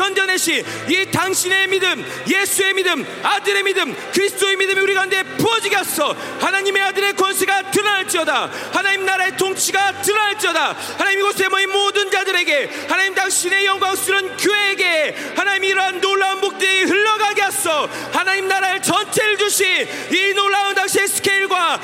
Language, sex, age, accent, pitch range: Korean, male, 40-59, native, 380-405 Hz